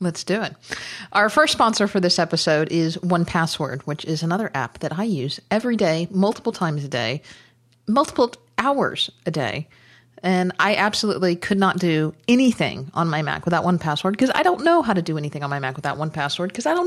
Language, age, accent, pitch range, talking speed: English, 40-59, American, 155-205 Hz, 205 wpm